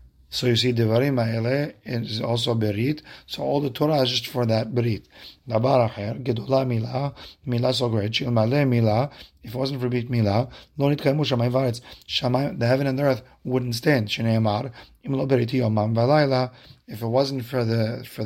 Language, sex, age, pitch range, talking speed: English, male, 40-59, 115-130 Hz, 180 wpm